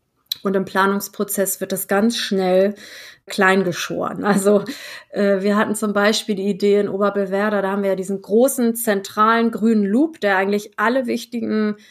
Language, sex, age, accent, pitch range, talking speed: German, female, 30-49, German, 195-220 Hz, 155 wpm